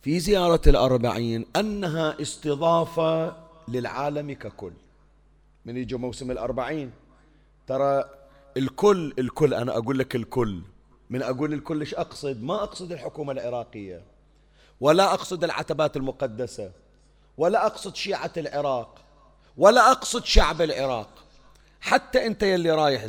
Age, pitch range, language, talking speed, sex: 40-59, 130-170 Hz, Arabic, 110 wpm, male